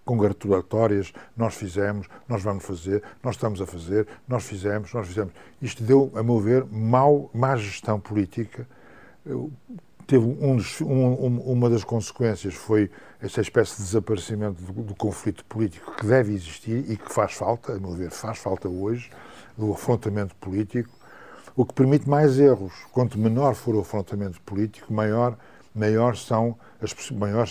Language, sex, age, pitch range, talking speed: Portuguese, male, 60-79, 100-120 Hz, 155 wpm